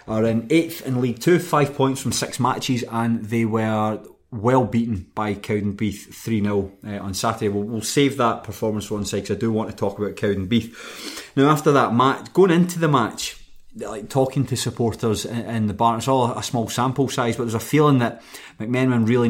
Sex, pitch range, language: male, 105-125 Hz, English